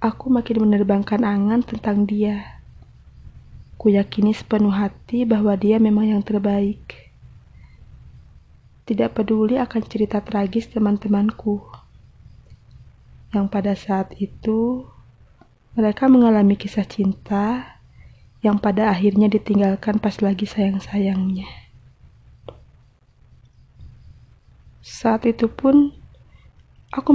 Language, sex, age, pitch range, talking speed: Indonesian, female, 20-39, 200-220 Hz, 85 wpm